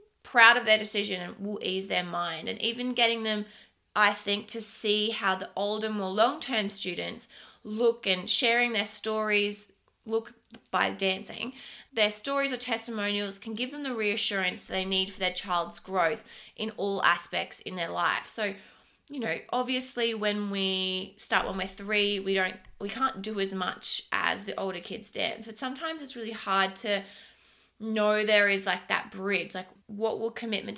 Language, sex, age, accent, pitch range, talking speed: English, female, 20-39, Australian, 190-225 Hz, 175 wpm